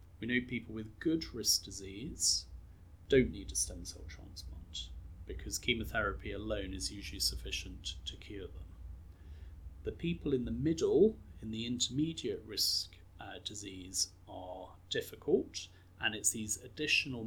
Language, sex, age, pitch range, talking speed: English, male, 40-59, 90-110 Hz, 135 wpm